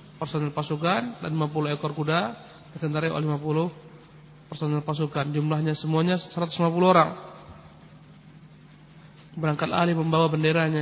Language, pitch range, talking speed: Indonesian, 155-180 Hz, 105 wpm